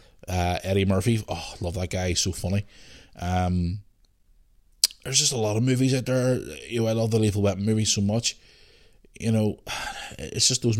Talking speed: 190 wpm